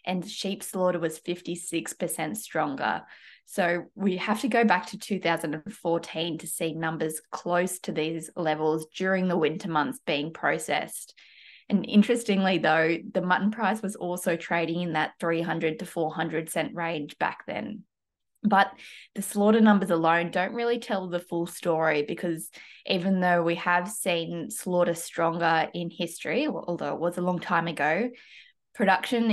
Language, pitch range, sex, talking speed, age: English, 165-190 Hz, female, 150 wpm, 20-39